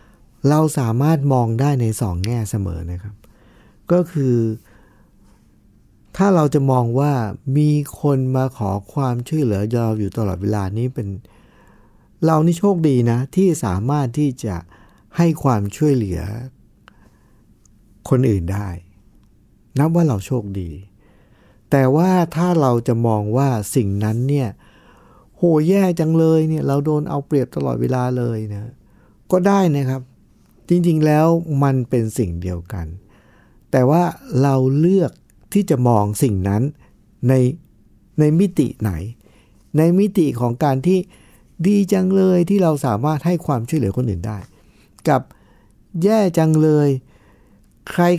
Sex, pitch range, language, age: male, 105-155 Hz, Thai, 60-79